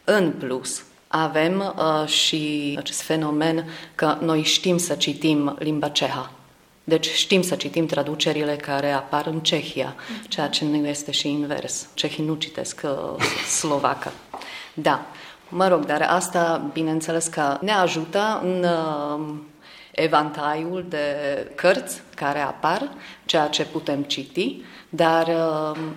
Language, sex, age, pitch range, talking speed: Romanian, female, 30-49, 145-170 Hz, 130 wpm